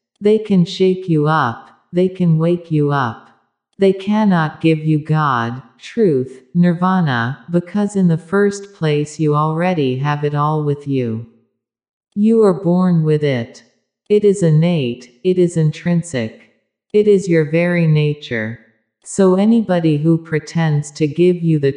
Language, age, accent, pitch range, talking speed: English, 50-69, American, 140-180 Hz, 145 wpm